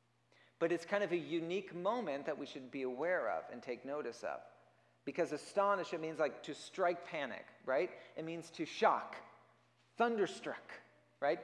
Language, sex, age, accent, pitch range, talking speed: English, male, 40-59, American, 120-195 Hz, 170 wpm